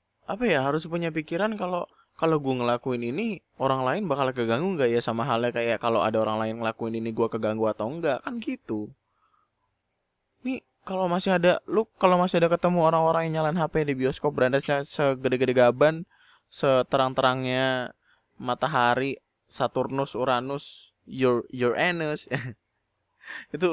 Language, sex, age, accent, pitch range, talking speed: Indonesian, male, 20-39, native, 115-155 Hz, 145 wpm